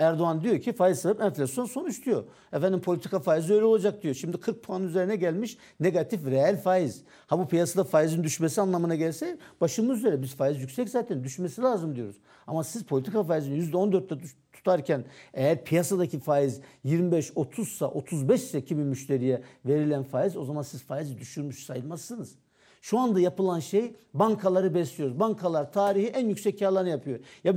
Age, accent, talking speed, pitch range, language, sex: 60-79, native, 160 wpm, 155-215 Hz, Turkish, male